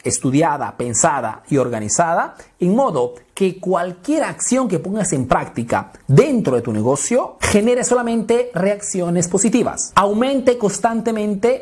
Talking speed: 120 wpm